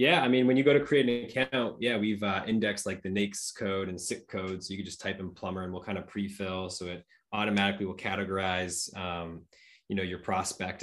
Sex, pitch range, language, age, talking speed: male, 95-115 Hz, English, 20-39, 240 wpm